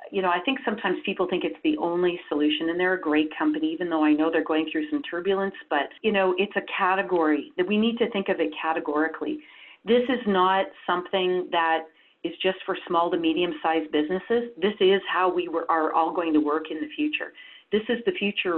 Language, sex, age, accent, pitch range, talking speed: English, female, 40-59, American, 165-210 Hz, 220 wpm